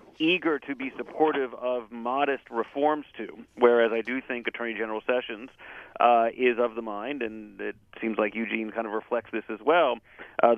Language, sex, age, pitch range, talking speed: English, male, 40-59, 115-130 Hz, 180 wpm